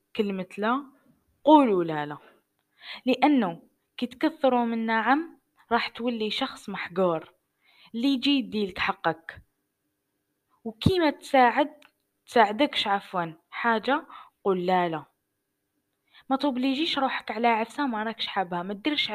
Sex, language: female, Arabic